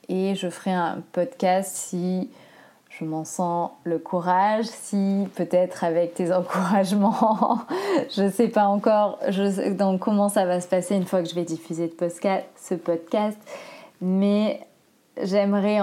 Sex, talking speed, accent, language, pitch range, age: female, 155 wpm, French, French, 170-205 Hz, 20-39